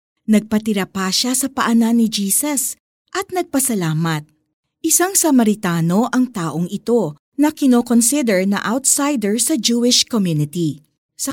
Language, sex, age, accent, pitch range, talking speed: Filipino, female, 40-59, native, 180-265 Hz, 115 wpm